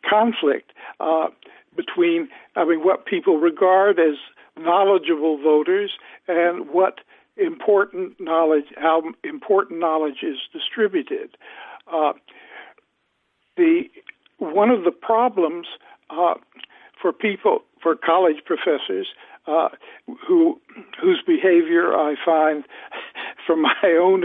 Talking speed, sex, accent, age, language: 100 wpm, male, American, 60-79, English